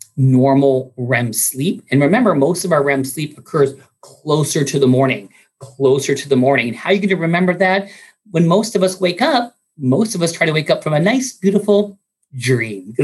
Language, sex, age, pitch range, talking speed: English, male, 40-59, 130-185 Hz, 210 wpm